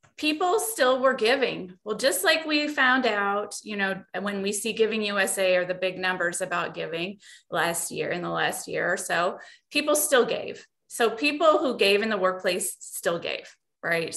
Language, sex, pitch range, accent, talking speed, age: English, female, 190-260 Hz, American, 185 wpm, 30-49